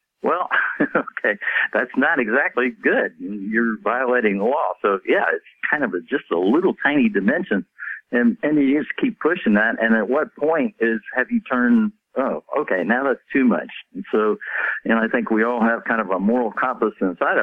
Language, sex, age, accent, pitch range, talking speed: English, male, 60-79, American, 105-145 Hz, 195 wpm